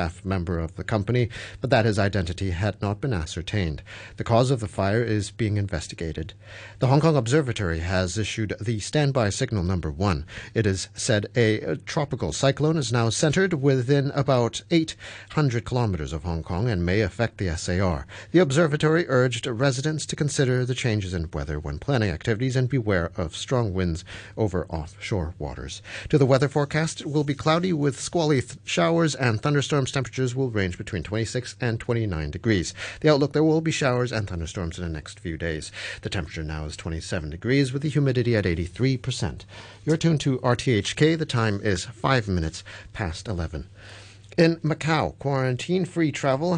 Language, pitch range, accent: English, 95-140 Hz, American